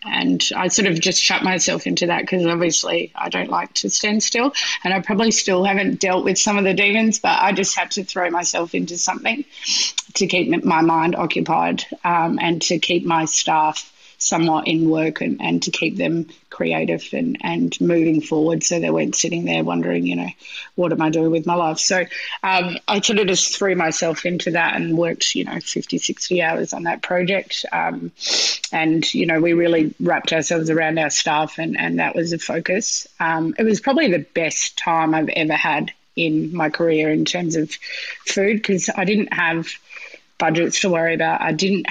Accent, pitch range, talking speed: Australian, 160-195 Hz, 200 wpm